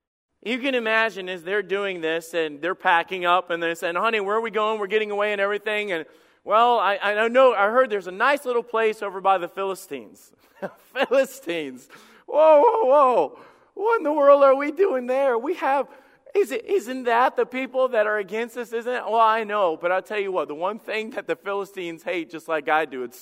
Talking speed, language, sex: 225 wpm, English, male